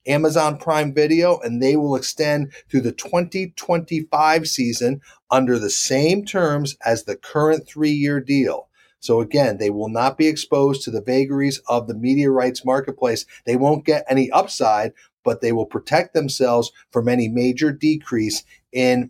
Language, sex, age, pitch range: English, male, 40-59, 130-160 Hz